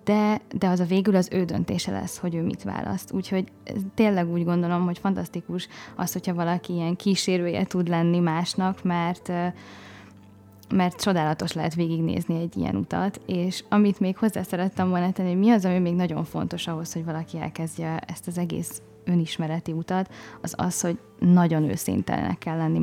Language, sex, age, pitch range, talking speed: Hungarian, female, 20-39, 165-185 Hz, 170 wpm